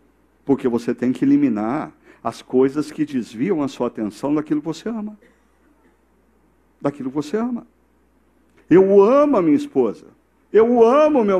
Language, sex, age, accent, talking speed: Portuguese, male, 60-79, Brazilian, 155 wpm